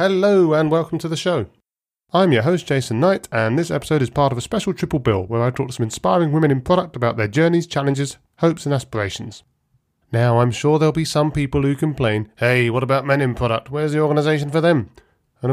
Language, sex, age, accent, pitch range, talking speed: English, male, 40-59, British, 115-150 Hz, 225 wpm